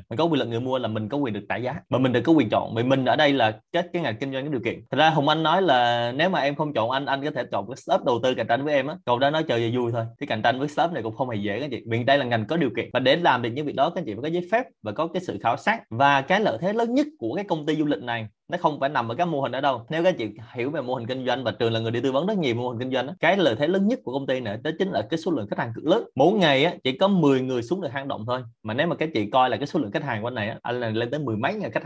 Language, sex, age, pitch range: Vietnamese, male, 20-39, 120-160 Hz